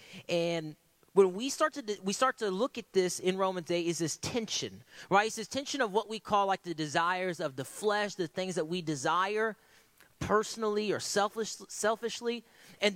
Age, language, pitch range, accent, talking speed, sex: 30-49, English, 170-220 Hz, American, 185 wpm, male